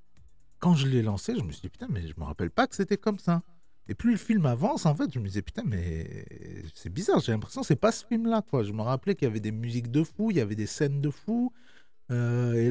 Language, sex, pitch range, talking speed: French, male, 105-170 Hz, 290 wpm